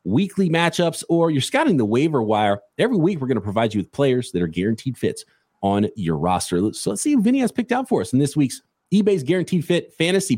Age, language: 30-49, English